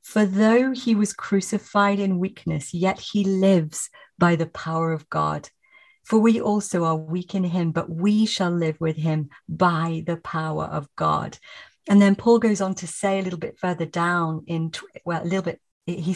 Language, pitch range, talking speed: English, 170-220 Hz, 190 wpm